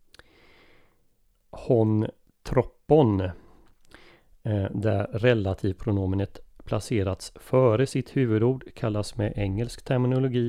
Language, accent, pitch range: Swedish, native, 100-120 Hz